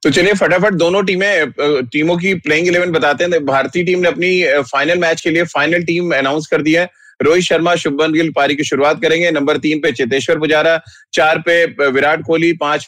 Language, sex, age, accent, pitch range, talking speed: Hindi, male, 30-49, native, 150-170 Hz, 200 wpm